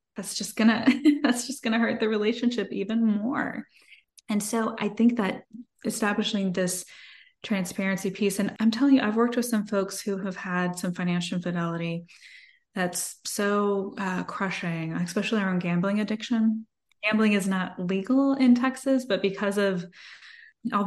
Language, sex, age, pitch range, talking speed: English, female, 20-39, 185-235 Hz, 155 wpm